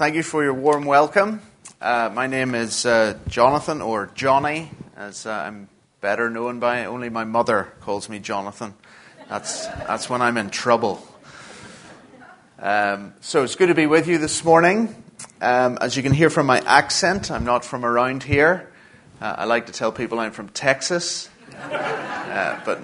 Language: English